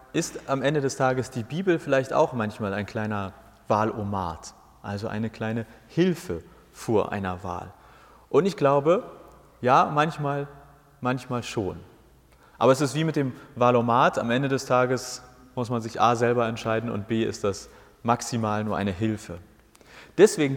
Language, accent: German, German